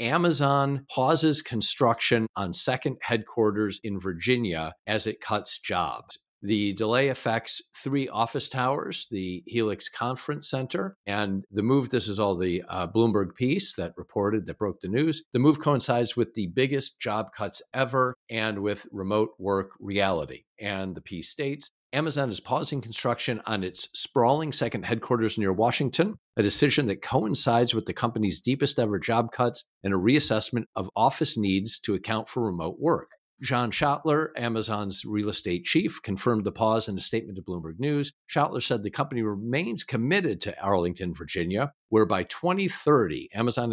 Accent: American